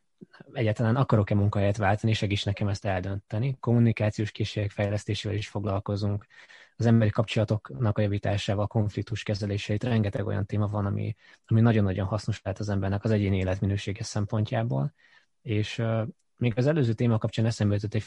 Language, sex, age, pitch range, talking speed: Hungarian, male, 20-39, 100-115 Hz, 150 wpm